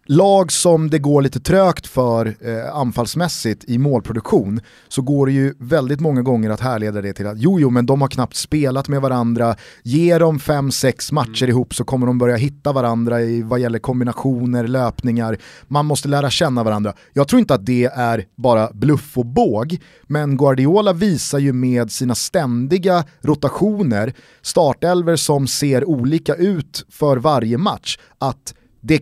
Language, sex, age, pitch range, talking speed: Swedish, male, 30-49, 120-155 Hz, 170 wpm